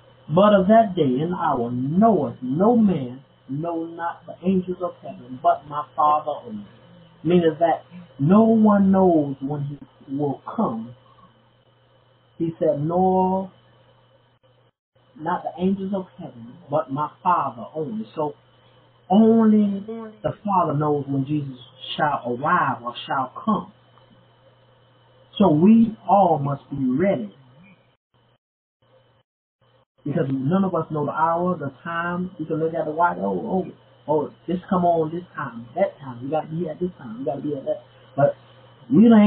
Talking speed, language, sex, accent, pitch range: 150 wpm, English, male, American, 130-180 Hz